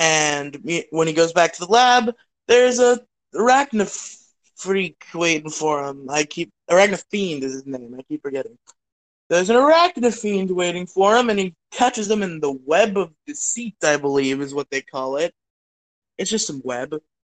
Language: English